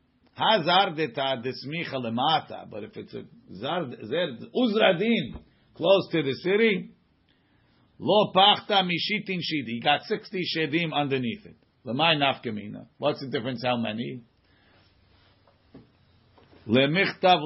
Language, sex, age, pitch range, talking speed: English, male, 50-69, 130-170 Hz, 105 wpm